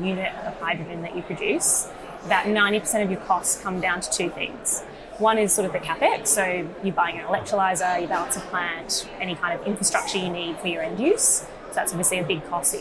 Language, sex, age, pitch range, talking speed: English, female, 20-39, 180-210 Hz, 220 wpm